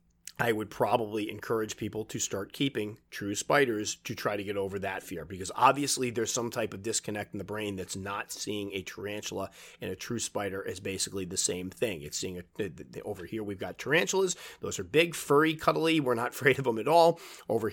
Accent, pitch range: American, 105-130 Hz